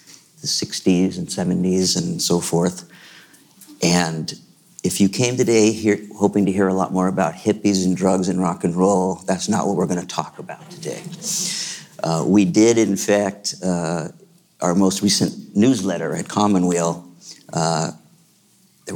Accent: American